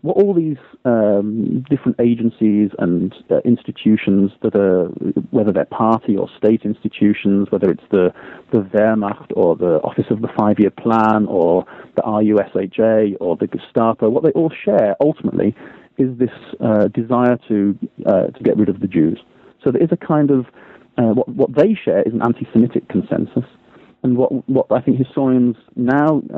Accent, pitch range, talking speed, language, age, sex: British, 105-125 Hz, 170 wpm, English, 40-59, male